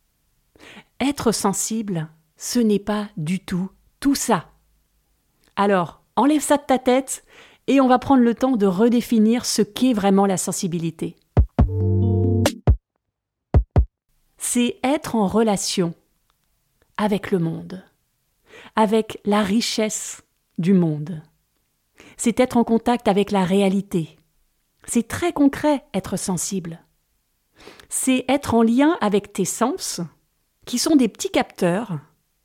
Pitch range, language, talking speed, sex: 185-250 Hz, French, 120 wpm, female